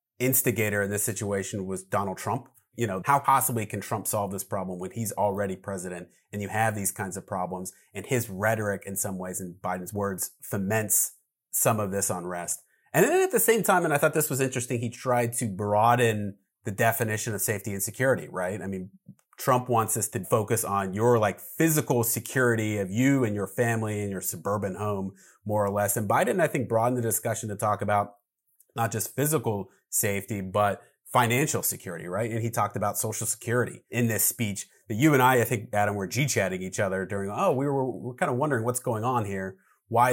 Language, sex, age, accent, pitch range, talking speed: English, male, 30-49, American, 100-125 Hz, 210 wpm